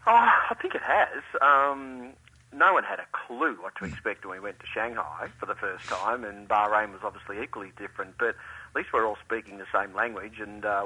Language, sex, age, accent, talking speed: English, male, 40-59, Australian, 220 wpm